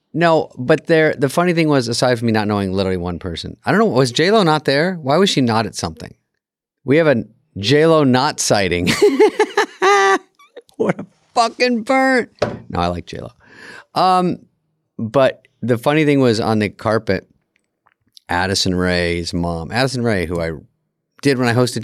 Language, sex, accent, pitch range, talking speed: English, male, American, 90-135 Hz, 175 wpm